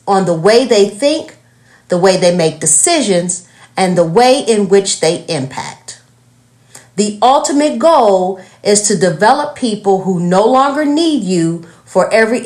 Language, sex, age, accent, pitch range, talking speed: English, female, 40-59, American, 165-245 Hz, 150 wpm